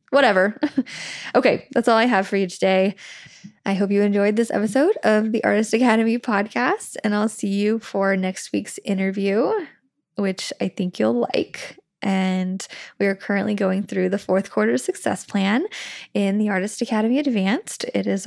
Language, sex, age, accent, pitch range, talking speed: English, female, 10-29, American, 195-235 Hz, 170 wpm